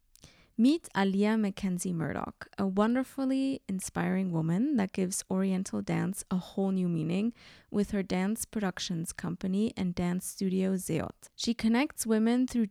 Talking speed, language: 135 wpm, English